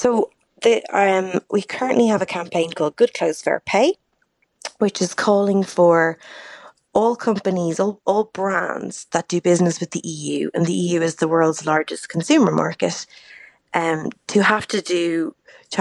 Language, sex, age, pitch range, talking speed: English, female, 20-39, 160-195 Hz, 165 wpm